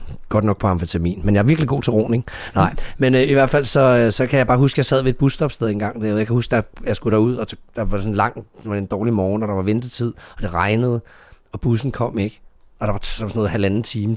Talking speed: 265 wpm